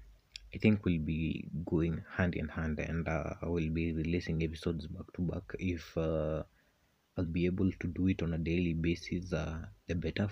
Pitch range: 80-95 Hz